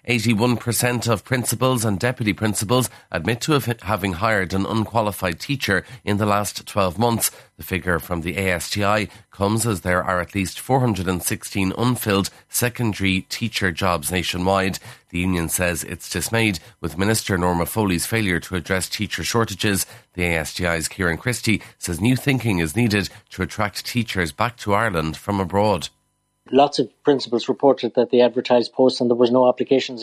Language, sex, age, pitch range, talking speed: English, male, 40-59, 95-125 Hz, 155 wpm